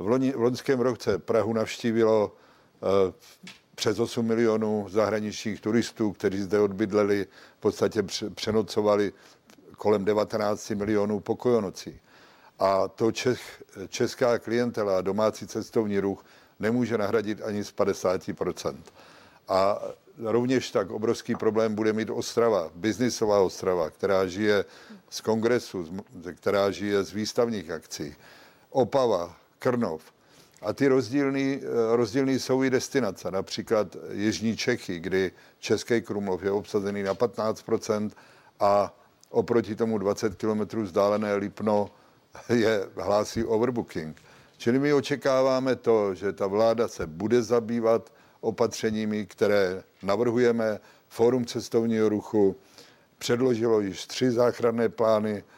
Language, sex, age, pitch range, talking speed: Czech, male, 50-69, 100-120 Hz, 115 wpm